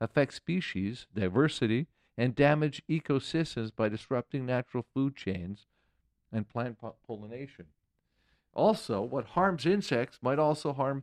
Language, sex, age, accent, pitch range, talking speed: English, male, 50-69, American, 110-145 Hz, 115 wpm